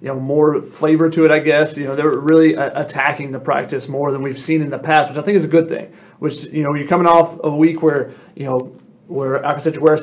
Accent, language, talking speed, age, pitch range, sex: American, English, 280 wpm, 30-49, 145-165 Hz, male